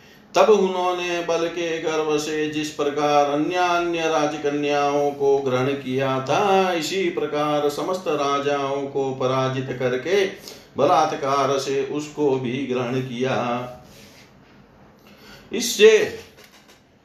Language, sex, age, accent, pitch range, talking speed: Hindi, male, 50-69, native, 125-155 Hz, 100 wpm